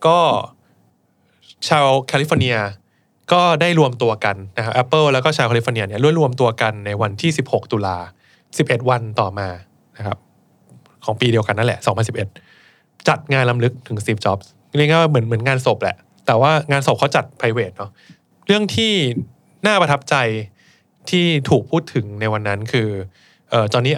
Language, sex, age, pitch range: Thai, male, 20-39, 110-145 Hz